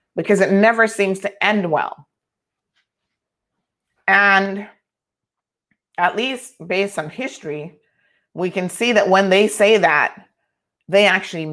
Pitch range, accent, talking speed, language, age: 175-220 Hz, American, 120 wpm, English, 30-49